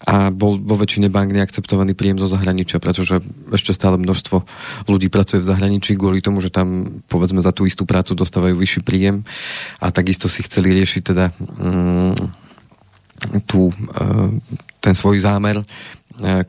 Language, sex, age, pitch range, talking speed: Slovak, male, 30-49, 95-100 Hz, 155 wpm